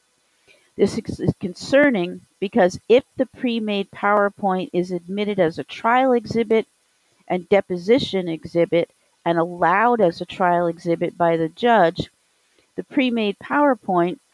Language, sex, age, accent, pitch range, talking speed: English, female, 50-69, American, 175-220 Hz, 120 wpm